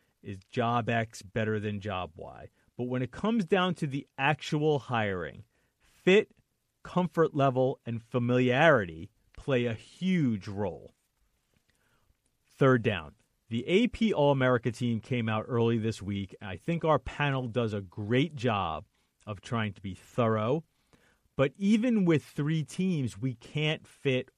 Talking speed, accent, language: 140 wpm, American, English